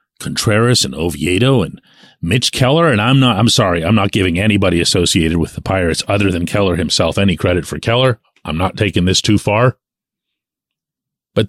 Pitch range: 110-160 Hz